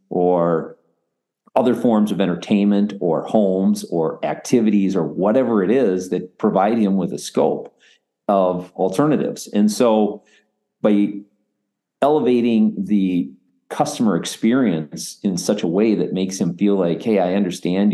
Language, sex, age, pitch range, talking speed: English, male, 40-59, 90-105 Hz, 135 wpm